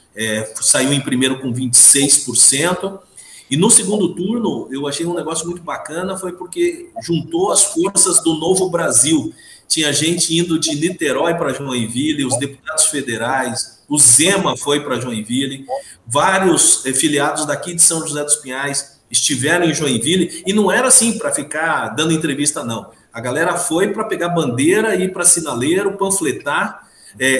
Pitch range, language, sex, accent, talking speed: 130-180 Hz, Portuguese, male, Brazilian, 155 wpm